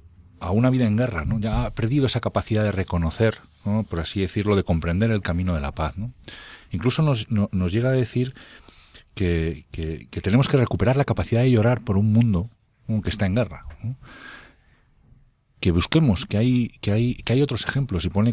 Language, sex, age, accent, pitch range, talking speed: Spanish, male, 40-59, Spanish, 90-115 Hz, 210 wpm